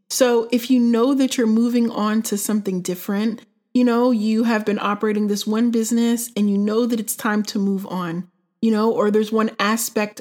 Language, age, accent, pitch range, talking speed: English, 30-49, American, 210-245 Hz, 205 wpm